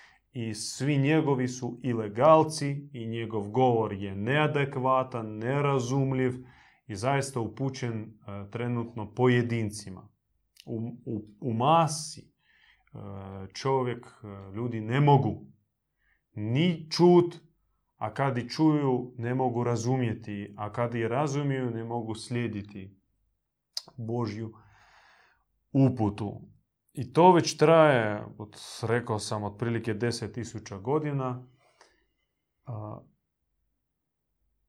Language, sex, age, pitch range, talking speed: Croatian, male, 30-49, 110-135 Hz, 95 wpm